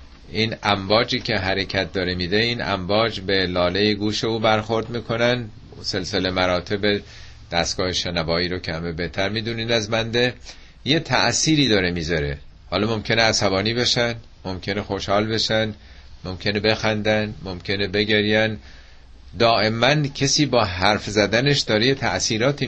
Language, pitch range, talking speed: Persian, 90-120 Hz, 125 wpm